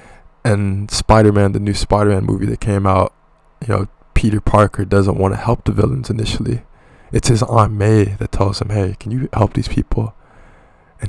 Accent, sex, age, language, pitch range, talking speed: American, male, 20-39, English, 95-110 Hz, 185 wpm